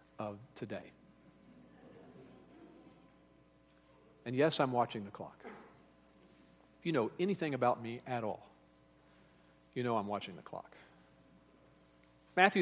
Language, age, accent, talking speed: English, 50-69, American, 110 wpm